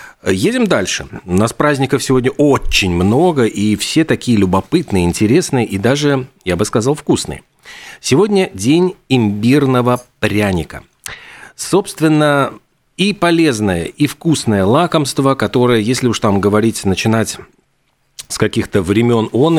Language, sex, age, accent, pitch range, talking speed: Russian, male, 40-59, native, 95-140 Hz, 120 wpm